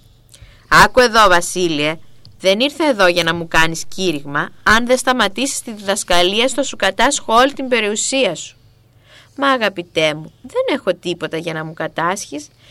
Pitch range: 155-250 Hz